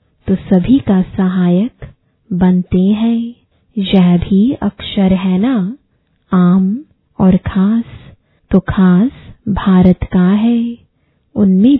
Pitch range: 185-220 Hz